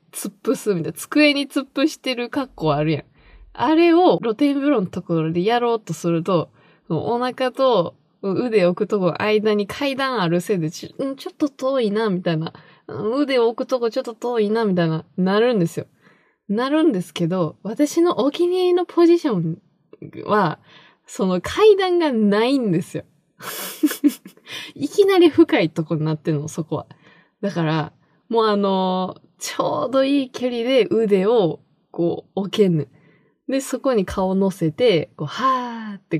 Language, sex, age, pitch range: Japanese, female, 20-39, 165-280 Hz